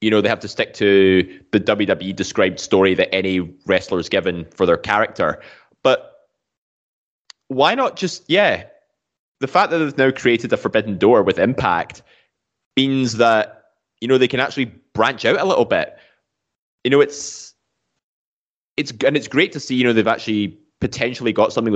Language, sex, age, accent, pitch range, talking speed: English, male, 20-39, British, 95-120 Hz, 175 wpm